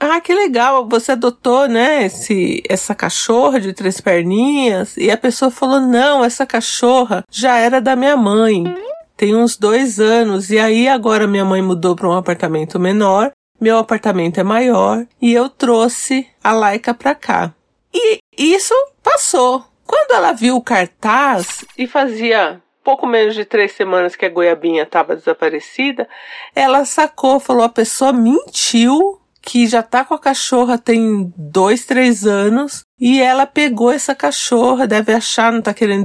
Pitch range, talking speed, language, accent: 200-260 Hz, 155 wpm, Portuguese, Brazilian